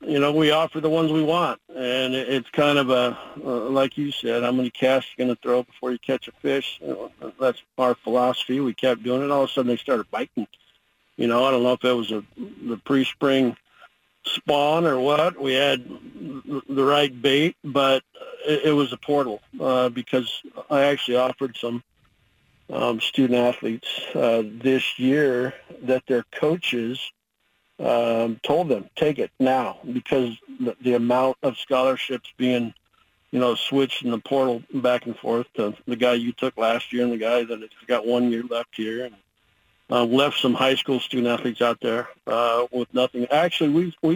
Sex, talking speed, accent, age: male, 185 wpm, American, 50-69